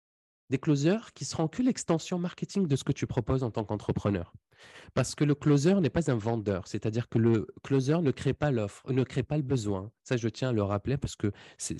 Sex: male